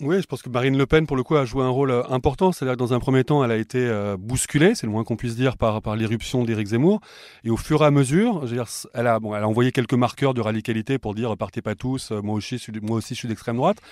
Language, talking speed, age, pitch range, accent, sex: French, 300 wpm, 30-49, 120-145 Hz, French, male